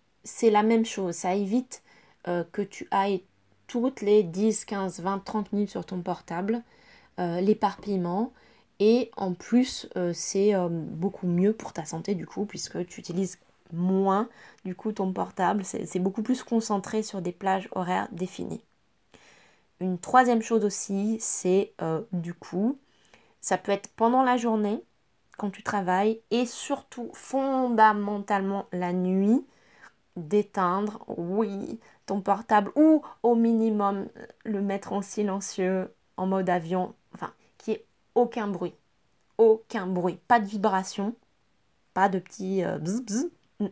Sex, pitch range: female, 185-225 Hz